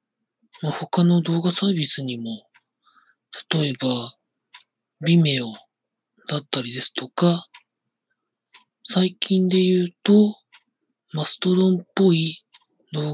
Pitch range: 145-195 Hz